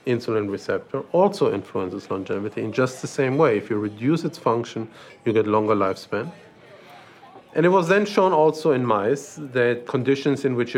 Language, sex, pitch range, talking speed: English, male, 115-145 Hz, 180 wpm